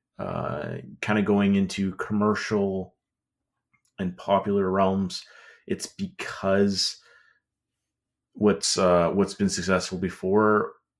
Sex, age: male, 30-49